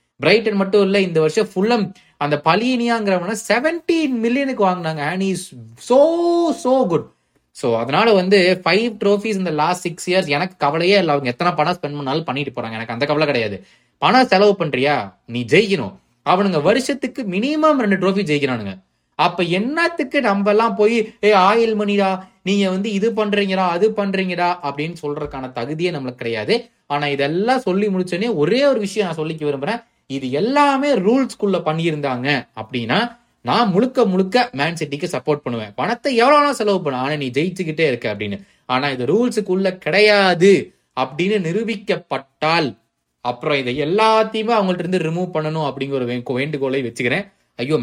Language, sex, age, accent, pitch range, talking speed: Tamil, male, 20-39, native, 150-220 Hz, 130 wpm